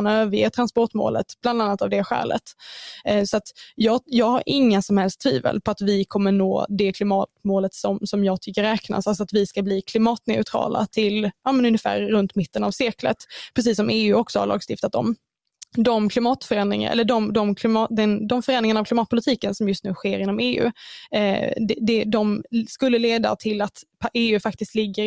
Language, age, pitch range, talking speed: Swedish, 20-39, 210-235 Hz, 185 wpm